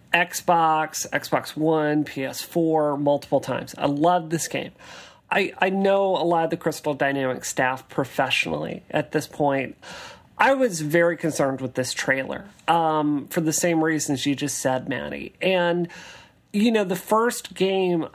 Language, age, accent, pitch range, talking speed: English, 40-59, American, 140-165 Hz, 150 wpm